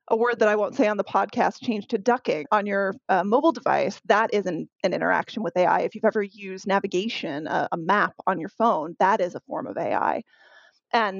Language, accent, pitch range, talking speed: English, American, 195-235 Hz, 225 wpm